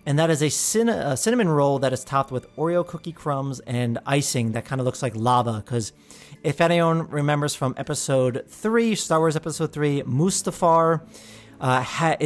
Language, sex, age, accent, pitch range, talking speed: English, male, 40-59, American, 125-165 Hz, 180 wpm